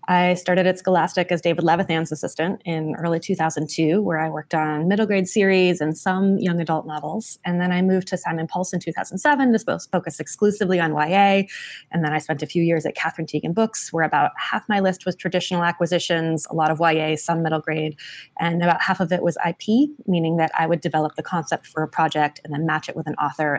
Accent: American